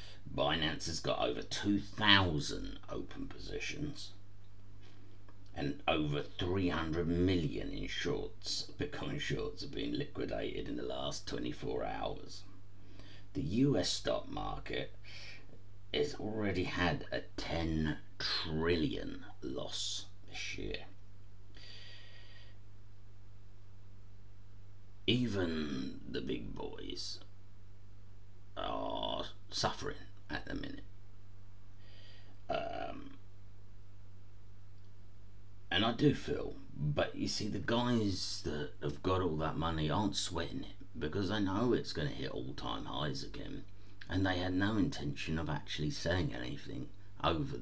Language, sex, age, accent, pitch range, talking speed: English, male, 50-69, British, 90-100 Hz, 105 wpm